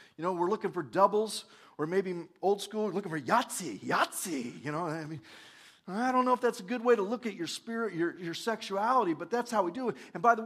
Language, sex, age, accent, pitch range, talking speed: English, male, 40-59, American, 175-230 Hz, 250 wpm